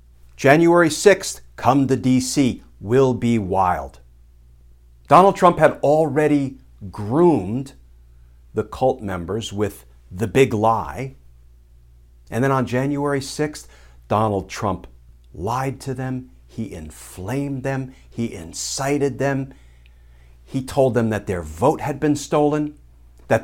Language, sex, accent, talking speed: English, male, American, 120 wpm